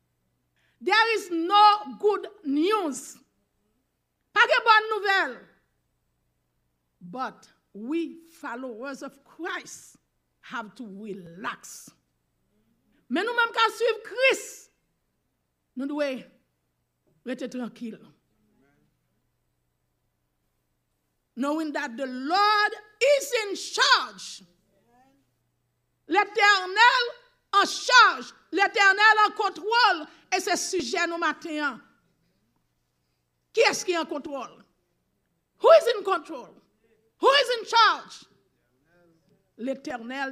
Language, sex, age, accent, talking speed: English, female, 50-69, Nigerian, 90 wpm